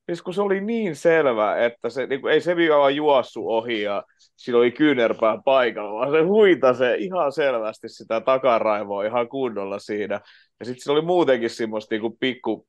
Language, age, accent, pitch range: Finnish, 30-49, native, 110-140 Hz